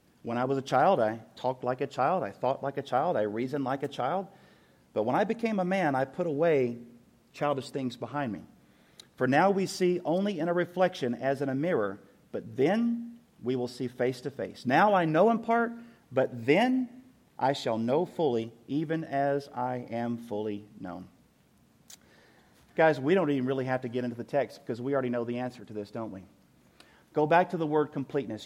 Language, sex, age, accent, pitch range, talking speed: English, male, 40-59, American, 125-160 Hz, 205 wpm